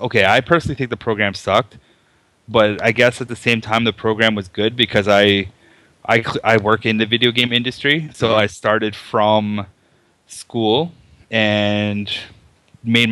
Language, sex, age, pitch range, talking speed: English, male, 20-39, 105-125 Hz, 160 wpm